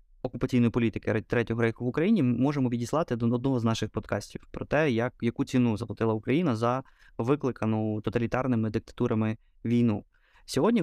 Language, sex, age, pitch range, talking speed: Ukrainian, male, 20-39, 115-130 Hz, 150 wpm